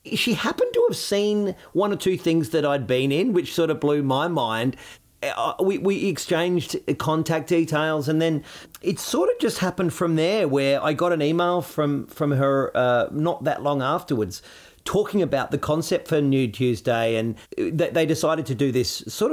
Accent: Australian